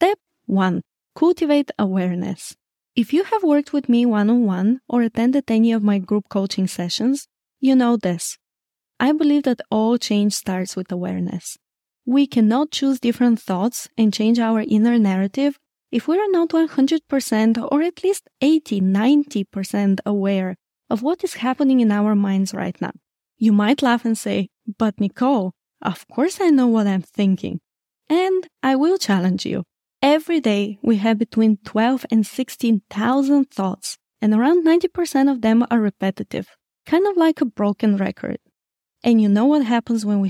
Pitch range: 205-275 Hz